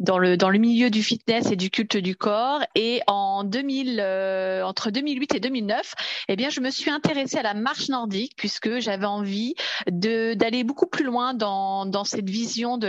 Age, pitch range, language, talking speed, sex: 30-49, 195-235 Hz, French, 205 wpm, female